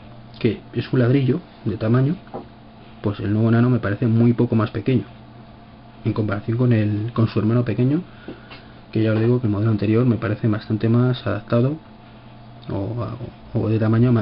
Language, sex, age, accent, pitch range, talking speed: Spanish, male, 30-49, Spanish, 110-115 Hz, 175 wpm